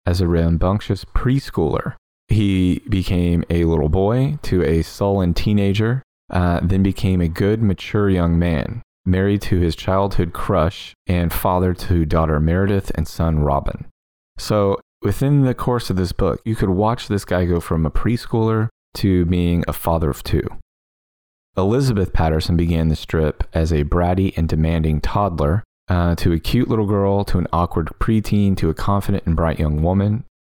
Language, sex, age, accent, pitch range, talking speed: English, male, 30-49, American, 80-100 Hz, 165 wpm